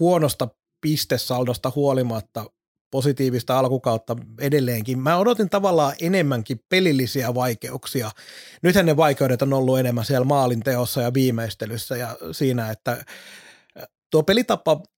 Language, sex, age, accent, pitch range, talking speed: Finnish, male, 30-49, native, 125-145 Hz, 110 wpm